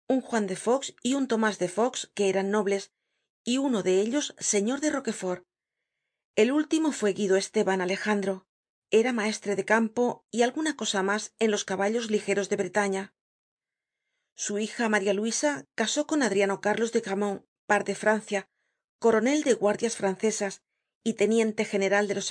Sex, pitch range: female, 205-240 Hz